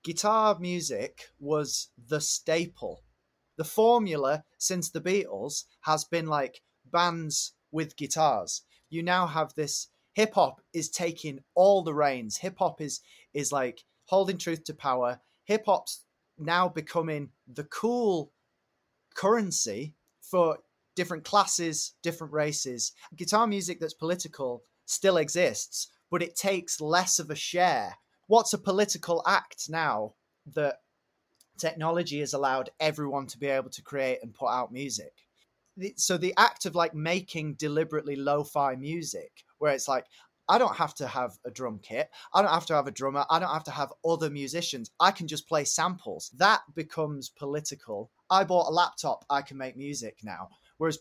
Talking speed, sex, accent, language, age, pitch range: 155 wpm, male, British, English, 30-49, 145-180 Hz